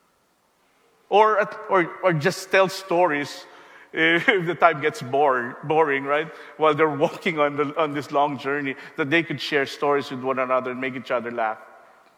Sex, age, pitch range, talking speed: male, 50-69, 135-180 Hz, 165 wpm